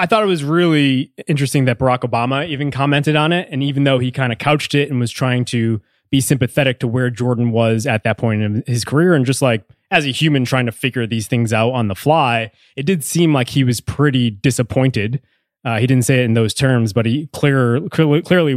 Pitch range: 115-155 Hz